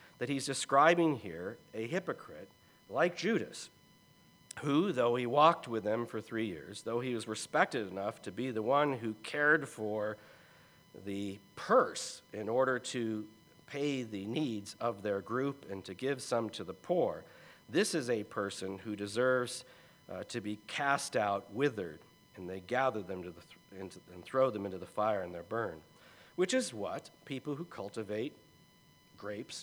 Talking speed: 160 wpm